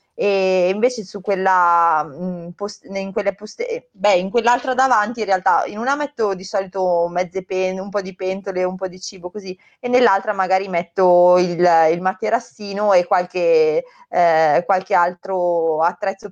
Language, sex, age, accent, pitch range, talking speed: Italian, female, 20-39, native, 180-210 Hz, 155 wpm